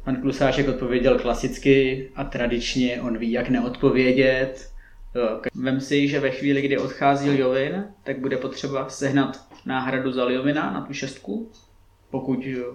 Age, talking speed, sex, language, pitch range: 20-39, 135 wpm, male, Czech, 120-135 Hz